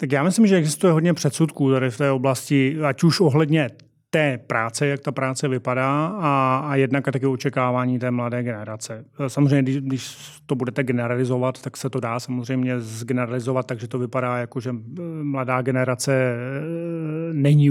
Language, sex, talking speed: Czech, male, 165 wpm